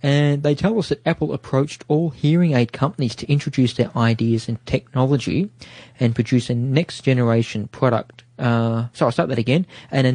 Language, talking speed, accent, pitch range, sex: English, 175 wpm, Australian, 115-135 Hz, male